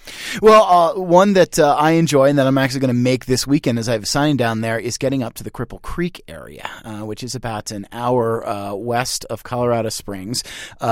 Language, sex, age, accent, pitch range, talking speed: English, male, 30-49, American, 110-140 Hz, 225 wpm